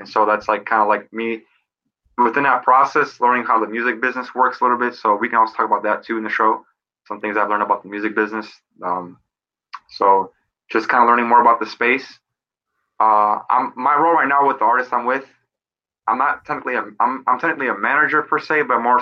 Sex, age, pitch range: male, 20-39, 105-120 Hz